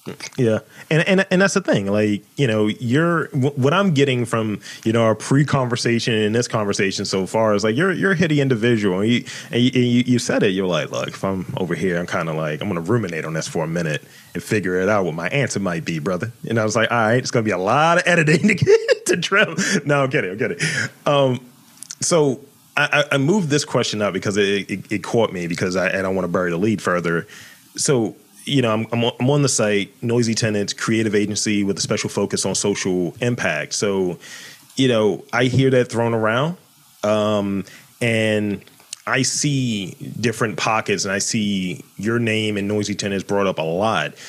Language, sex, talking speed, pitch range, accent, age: English, male, 215 wpm, 100-135 Hz, American, 30-49